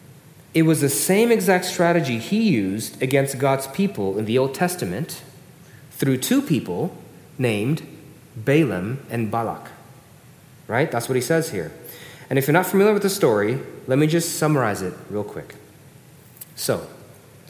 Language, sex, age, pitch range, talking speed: English, male, 40-59, 125-160 Hz, 150 wpm